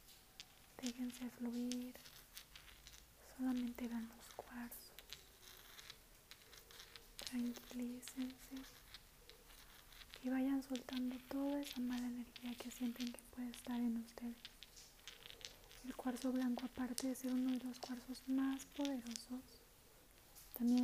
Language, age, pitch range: Spanish, 30-49, 240-255 Hz